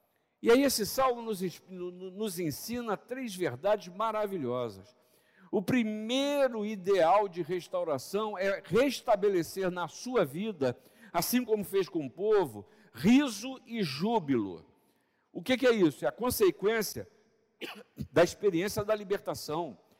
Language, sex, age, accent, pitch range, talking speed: Portuguese, male, 50-69, Brazilian, 185-235 Hz, 125 wpm